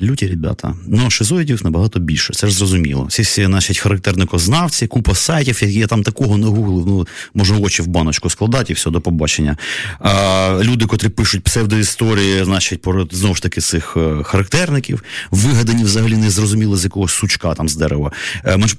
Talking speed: 165 wpm